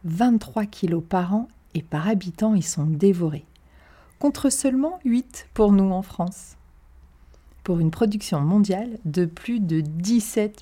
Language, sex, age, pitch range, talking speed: French, female, 40-59, 150-215 Hz, 140 wpm